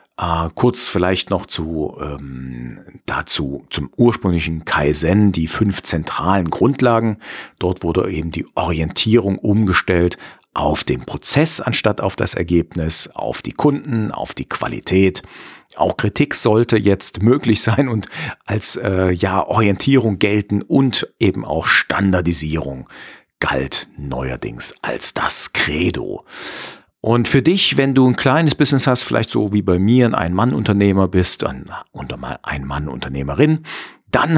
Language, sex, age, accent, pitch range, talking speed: German, male, 50-69, German, 90-125 Hz, 135 wpm